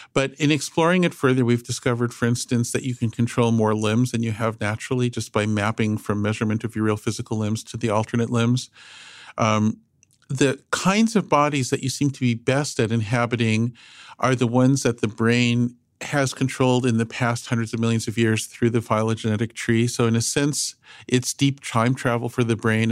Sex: male